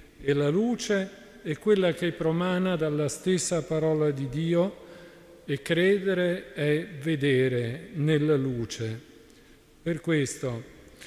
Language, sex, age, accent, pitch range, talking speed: Italian, male, 50-69, native, 150-175 Hz, 110 wpm